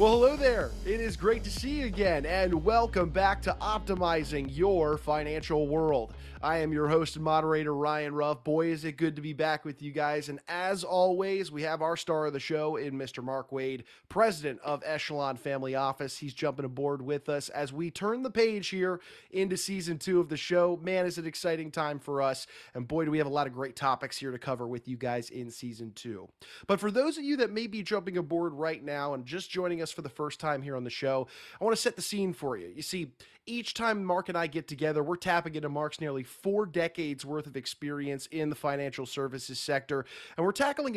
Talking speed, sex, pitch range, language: 230 wpm, male, 140-185 Hz, English